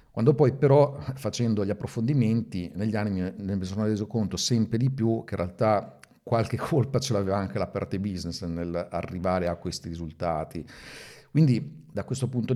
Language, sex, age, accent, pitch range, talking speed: Italian, male, 50-69, native, 90-110 Hz, 170 wpm